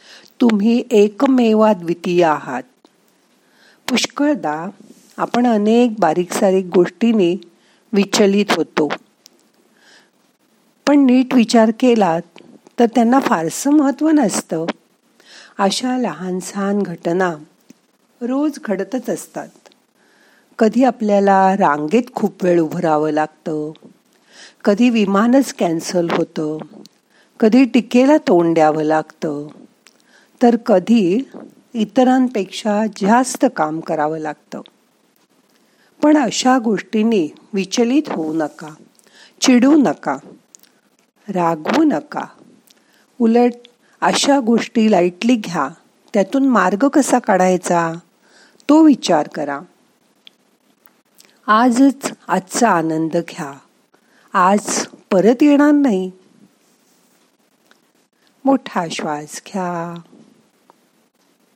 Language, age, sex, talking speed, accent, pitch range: Marathi, 50-69, female, 70 wpm, native, 180-255 Hz